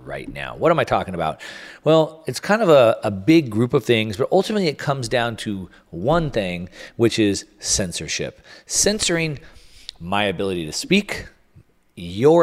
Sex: male